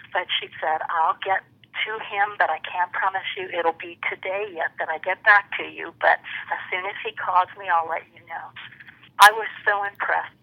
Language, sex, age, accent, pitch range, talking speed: English, female, 50-69, American, 170-195 Hz, 215 wpm